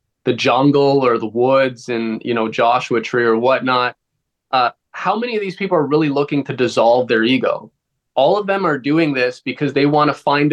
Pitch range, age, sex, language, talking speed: 125-140 Hz, 20-39, male, English, 205 wpm